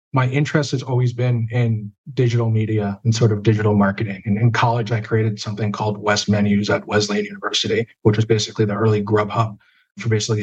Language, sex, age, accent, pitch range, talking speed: English, male, 40-59, American, 110-125 Hz, 190 wpm